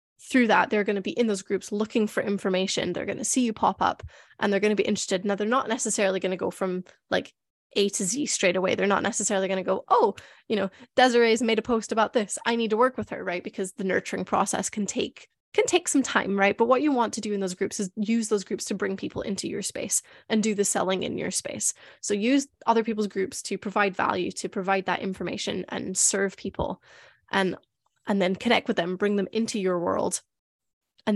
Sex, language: female, English